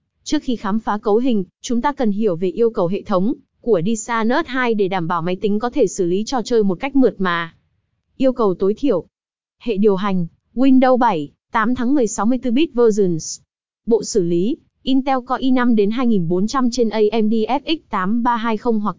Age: 20-39